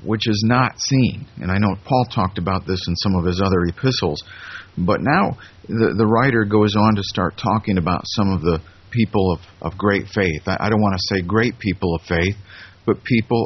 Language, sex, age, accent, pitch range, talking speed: English, male, 50-69, American, 95-115 Hz, 215 wpm